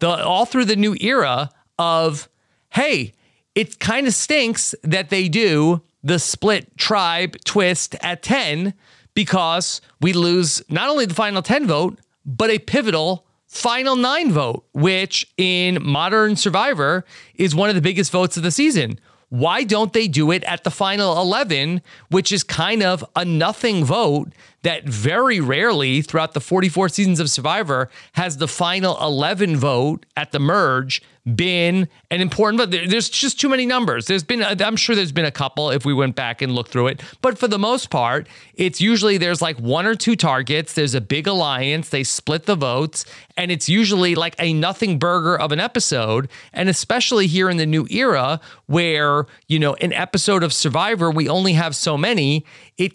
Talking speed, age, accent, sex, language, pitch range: 180 wpm, 30-49, American, male, English, 150-200 Hz